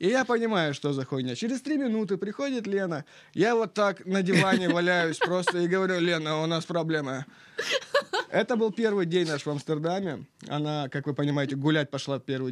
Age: 20-39